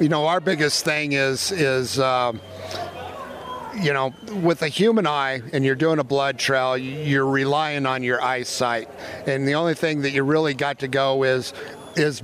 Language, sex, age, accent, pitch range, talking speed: English, male, 50-69, American, 130-155 Hz, 180 wpm